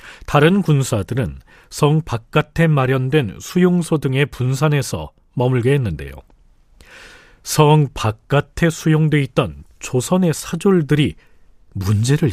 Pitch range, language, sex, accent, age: 115-175 Hz, Korean, male, native, 40-59